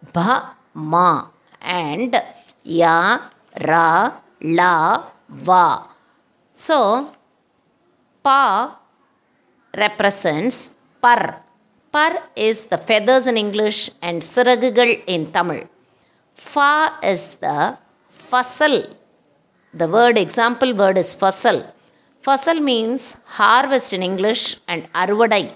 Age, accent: 50-69, native